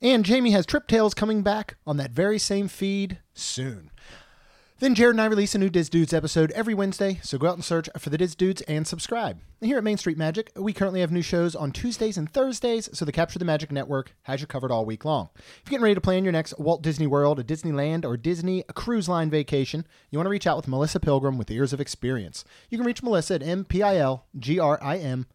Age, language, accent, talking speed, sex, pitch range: 30-49, English, American, 230 wpm, male, 145-195 Hz